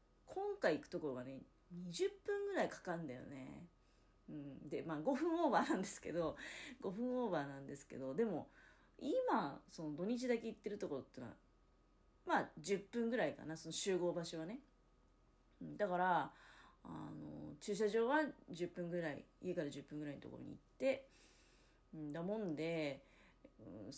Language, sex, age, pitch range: Japanese, female, 30-49, 155-225 Hz